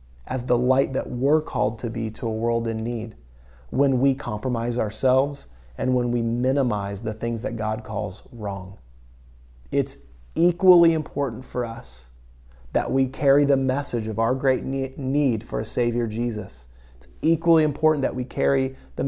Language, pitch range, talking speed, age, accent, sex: English, 90-130 Hz, 165 wpm, 30-49, American, male